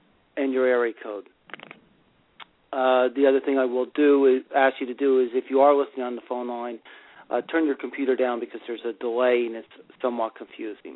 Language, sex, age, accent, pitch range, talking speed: English, male, 40-59, American, 125-140 Hz, 210 wpm